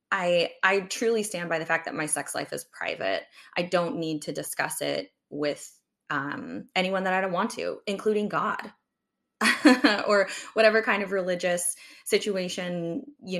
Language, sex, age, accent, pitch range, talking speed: English, female, 20-39, American, 165-215 Hz, 160 wpm